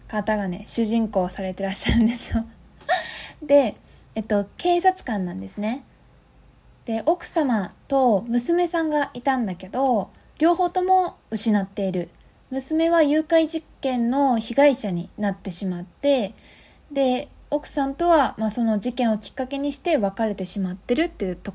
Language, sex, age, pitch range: Japanese, female, 20-39, 200-285 Hz